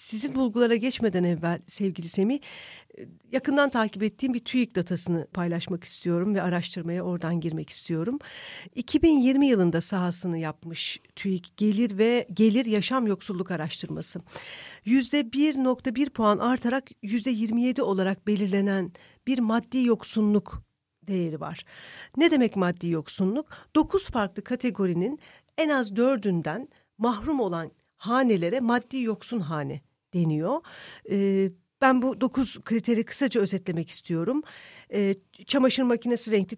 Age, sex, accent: 50-69, female, native